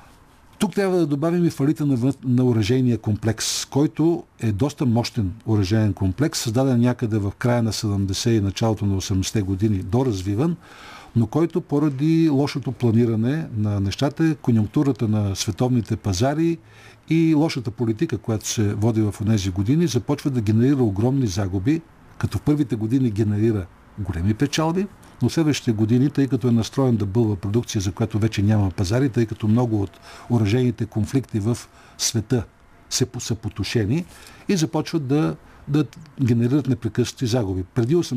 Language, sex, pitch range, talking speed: Bulgarian, male, 110-140 Hz, 145 wpm